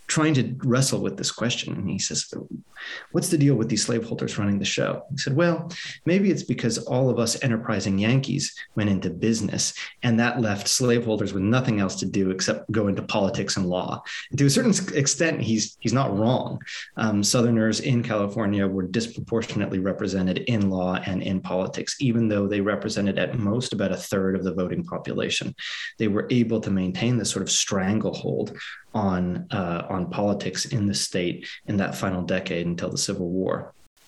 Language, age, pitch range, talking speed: English, 30-49, 95-120 Hz, 185 wpm